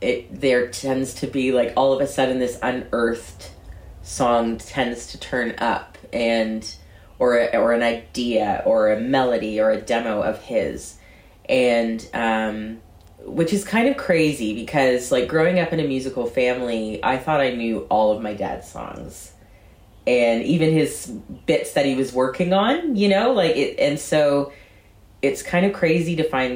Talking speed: 170 wpm